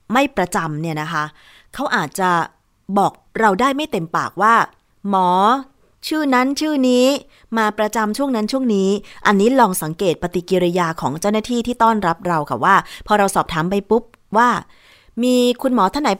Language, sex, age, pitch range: Thai, female, 20-39, 170-230 Hz